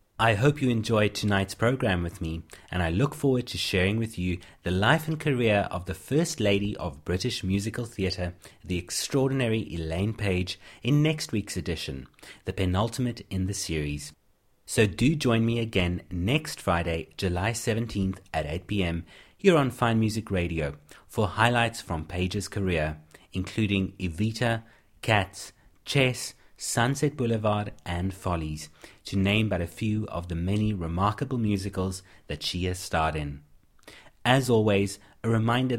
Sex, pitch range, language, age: male, 90-115 Hz, English, 30-49